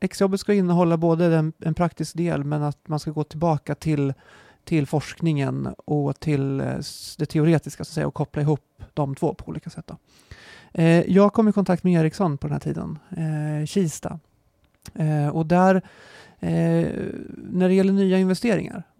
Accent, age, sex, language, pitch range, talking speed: native, 30-49, male, Swedish, 150-175 Hz, 140 wpm